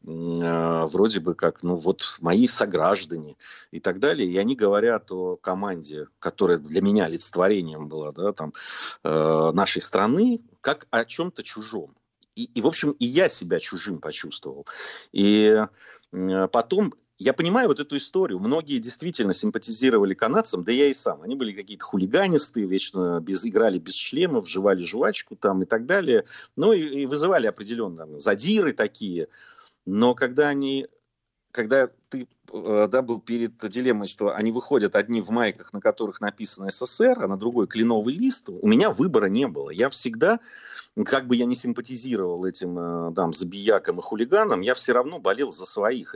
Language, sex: Russian, male